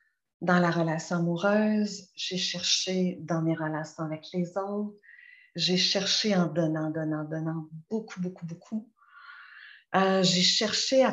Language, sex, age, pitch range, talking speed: French, female, 50-69, 170-205 Hz, 135 wpm